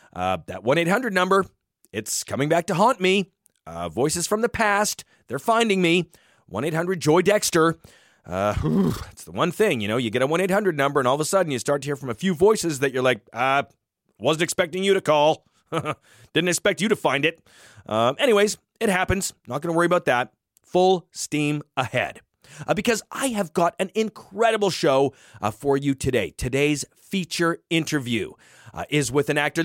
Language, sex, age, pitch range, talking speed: English, male, 30-49, 135-190 Hz, 185 wpm